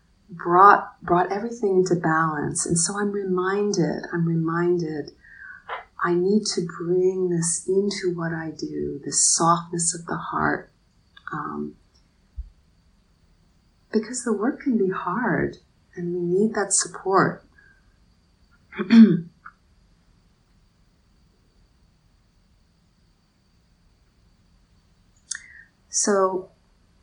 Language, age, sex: English, 30-49, female